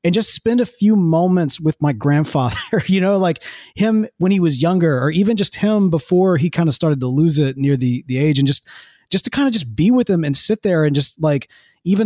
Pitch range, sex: 140-185 Hz, male